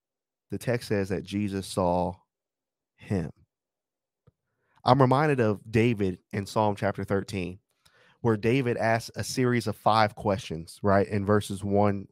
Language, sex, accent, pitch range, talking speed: English, male, American, 100-125 Hz, 135 wpm